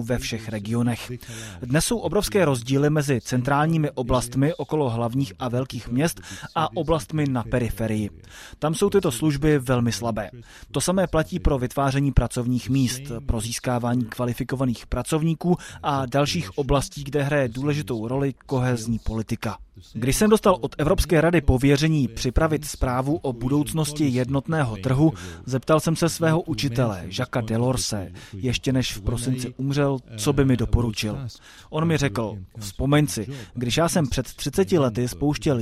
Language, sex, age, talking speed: Czech, male, 20-39, 145 wpm